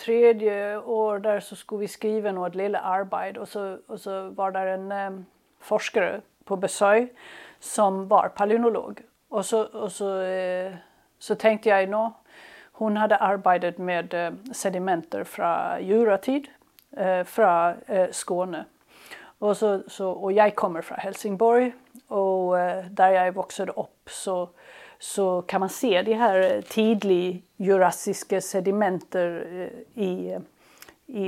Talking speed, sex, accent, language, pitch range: 130 wpm, female, Swedish, Danish, 185-215 Hz